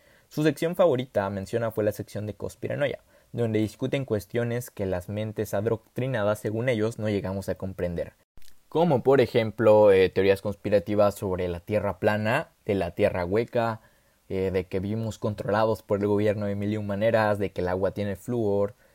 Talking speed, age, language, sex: 170 wpm, 20-39, Spanish, male